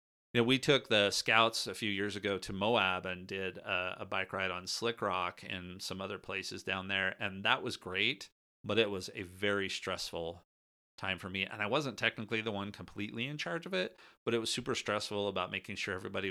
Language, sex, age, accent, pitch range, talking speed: English, male, 30-49, American, 95-105 Hz, 220 wpm